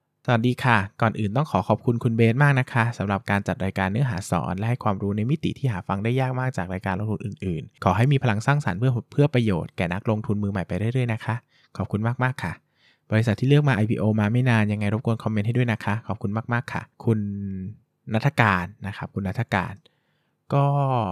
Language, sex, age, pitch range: Thai, male, 20-39, 95-120 Hz